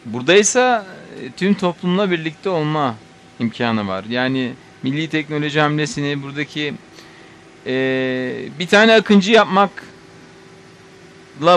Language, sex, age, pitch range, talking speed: Turkish, male, 40-59, 135-175 Hz, 90 wpm